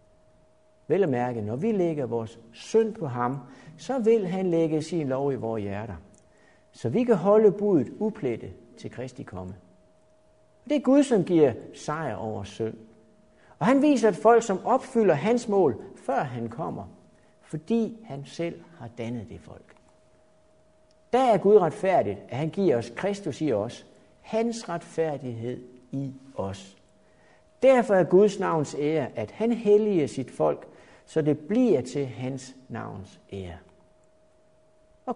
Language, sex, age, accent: Danish, male, 60-79, native